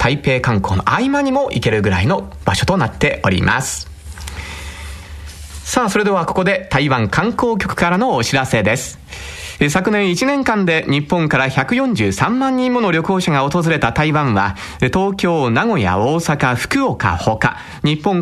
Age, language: 40-59, Japanese